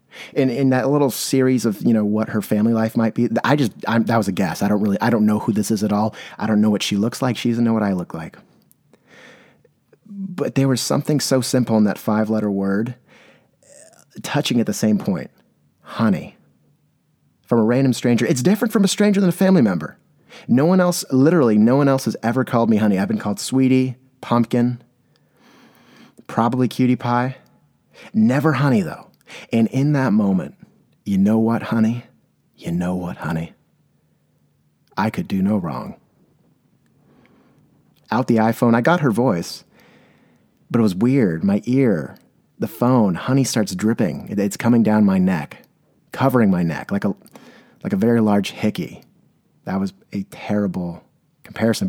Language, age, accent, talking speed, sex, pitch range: English, 30-49, American, 180 wpm, male, 105-135 Hz